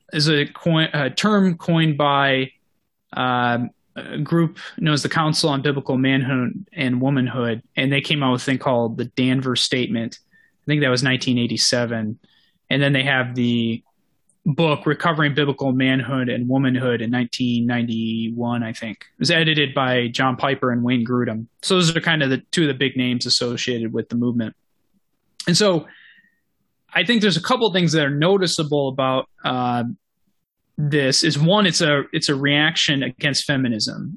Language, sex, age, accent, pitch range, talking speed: English, male, 20-39, American, 125-160 Hz, 175 wpm